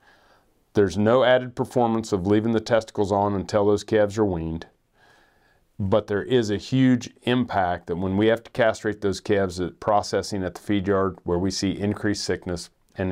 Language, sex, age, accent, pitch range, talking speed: English, male, 40-59, American, 95-120 Hz, 185 wpm